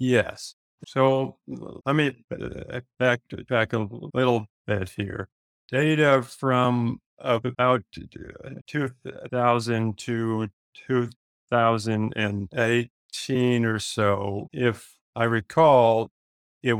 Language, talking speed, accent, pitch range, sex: English, 90 wpm, American, 105-125 Hz, male